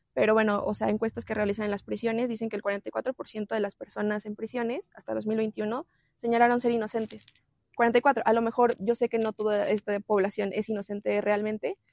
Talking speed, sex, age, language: 190 wpm, female, 20-39, Spanish